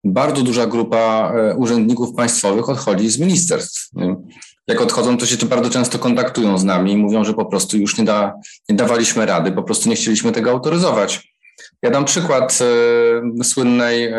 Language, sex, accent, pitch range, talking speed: Polish, male, native, 110-130 Hz, 165 wpm